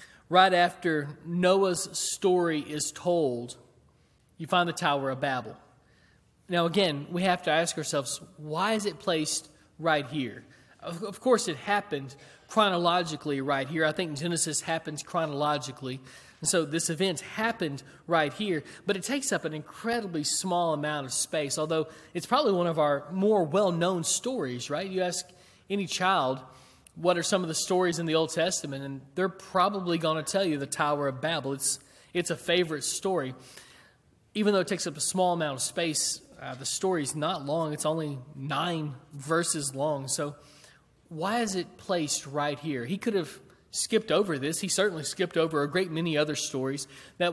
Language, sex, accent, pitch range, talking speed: English, male, American, 145-185 Hz, 170 wpm